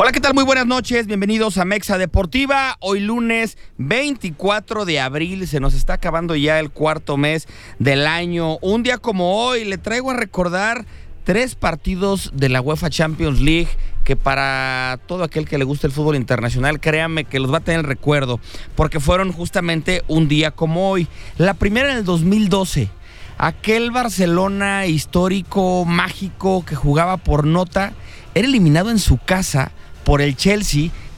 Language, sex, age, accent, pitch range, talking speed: English, male, 30-49, Mexican, 140-190 Hz, 165 wpm